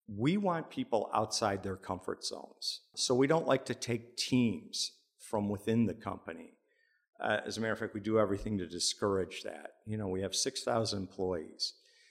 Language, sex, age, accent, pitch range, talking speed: English, male, 50-69, American, 100-130 Hz, 180 wpm